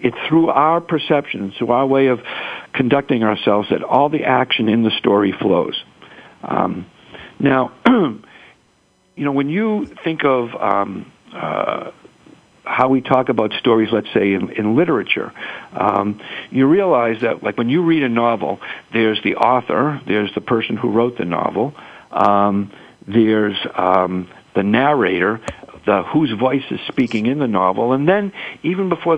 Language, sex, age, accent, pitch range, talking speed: English, male, 50-69, American, 110-145 Hz, 150 wpm